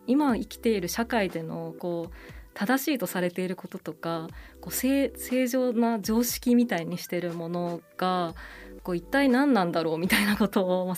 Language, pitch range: Japanese, 170-235 Hz